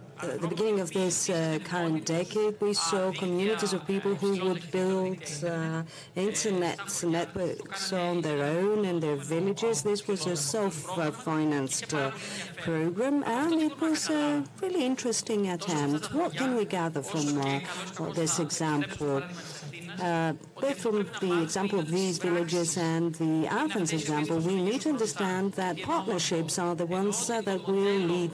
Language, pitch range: Greek, 160-205 Hz